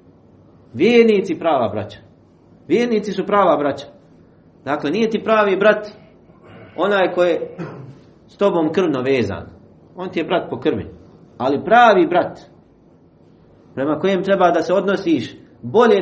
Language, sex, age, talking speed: English, male, 40-59, 130 wpm